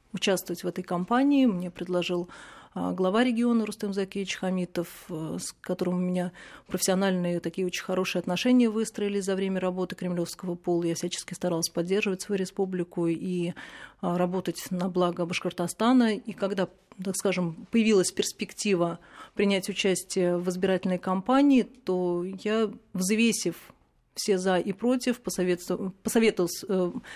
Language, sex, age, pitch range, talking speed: Russian, female, 30-49, 180-210 Hz, 125 wpm